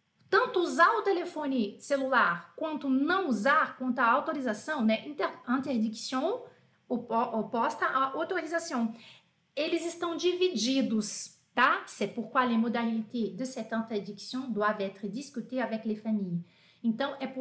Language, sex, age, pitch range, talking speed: French, female, 40-59, 225-320 Hz, 115 wpm